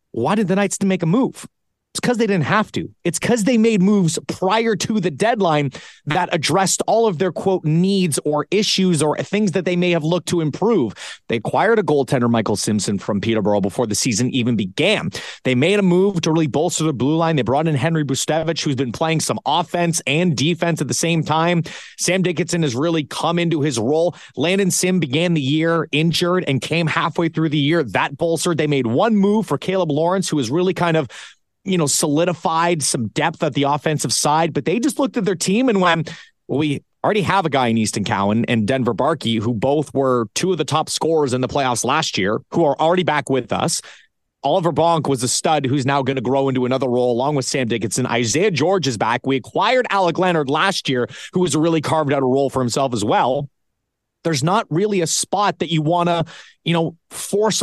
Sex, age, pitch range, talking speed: male, 30-49, 140-180 Hz, 225 wpm